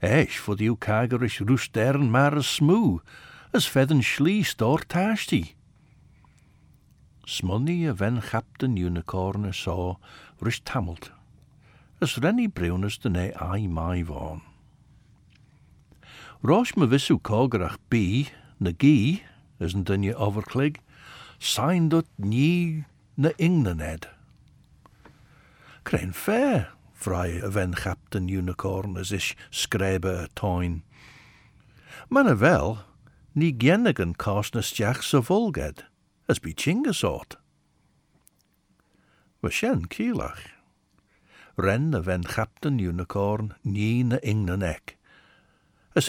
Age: 60-79